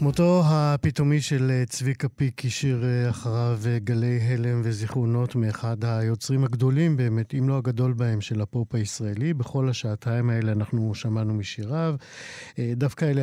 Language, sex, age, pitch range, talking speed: Hebrew, male, 50-69, 125-155 Hz, 130 wpm